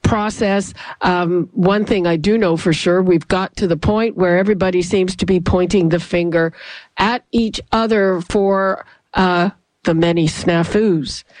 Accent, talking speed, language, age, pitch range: American, 160 wpm, English, 50-69, 180-225 Hz